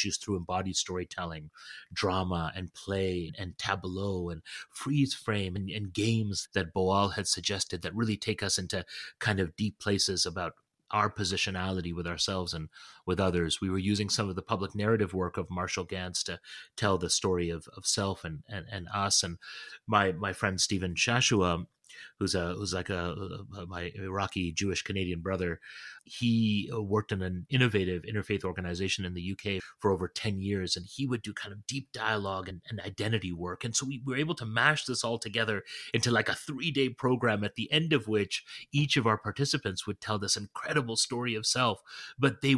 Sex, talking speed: male, 190 wpm